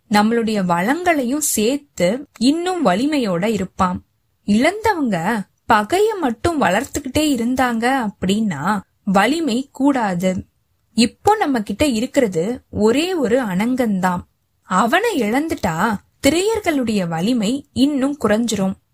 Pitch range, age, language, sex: 200-280 Hz, 20-39, Tamil, female